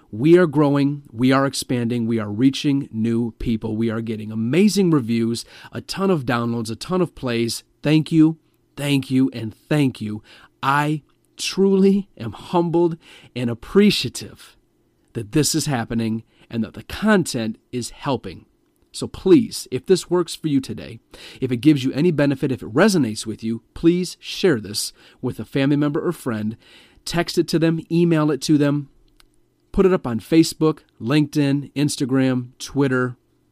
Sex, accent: male, American